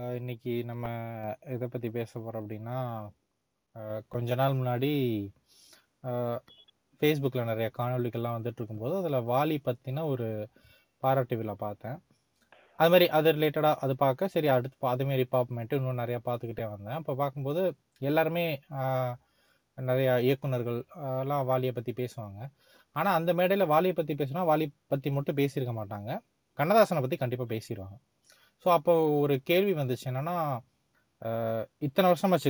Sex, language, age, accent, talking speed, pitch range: male, Tamil, 20-39, native, 125 wpm, 120-155 Hz